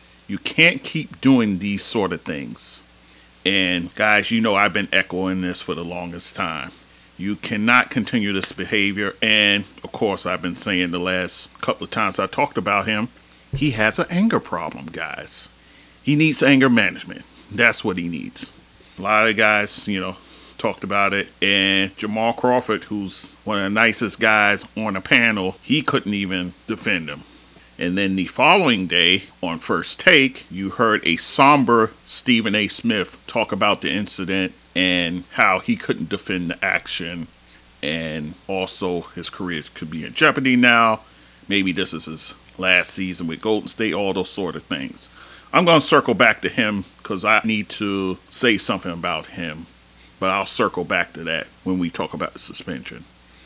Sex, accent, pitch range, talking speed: male, American, 85-105 Hz, 175 wpm